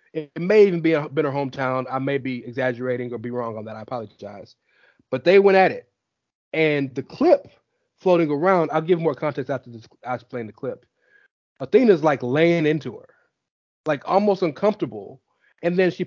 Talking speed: 185 wpm